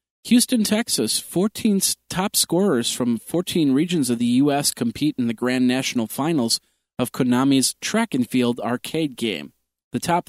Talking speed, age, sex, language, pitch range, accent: 150 wpm, 40-59, male, English, 120-145 Hz, American